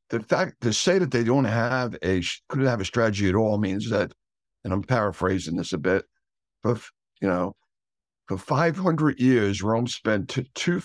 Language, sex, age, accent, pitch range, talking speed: English, male, 60-79, American, 100-130 Hz, 175 wpm